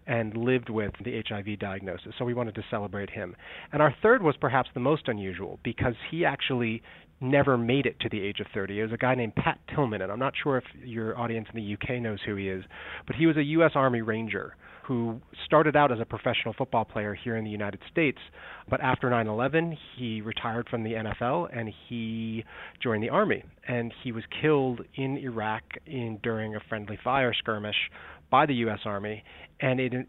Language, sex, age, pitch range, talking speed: English, male, 30-49, 110-130 Hz, 205 wpm